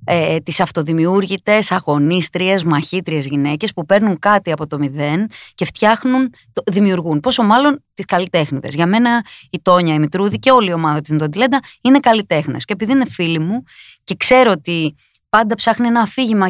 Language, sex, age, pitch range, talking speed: Greek, female, 20-39, 160-250 Hz, 165 wpm